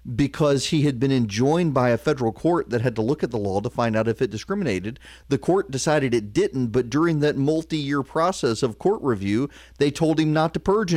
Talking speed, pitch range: 225 wpm, 115-175 Hz